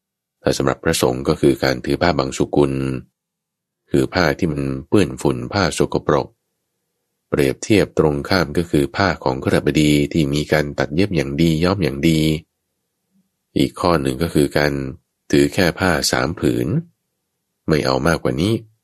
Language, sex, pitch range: Thai, male, 70-105 Hz